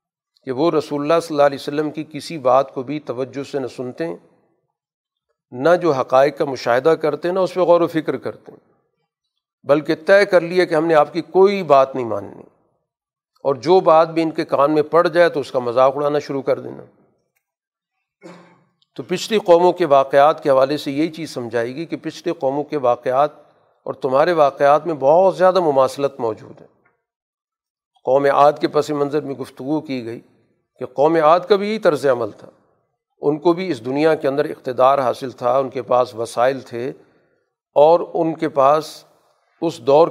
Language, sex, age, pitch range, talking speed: Urdu, male, 50-69, 135-165 Hz, 190 wpm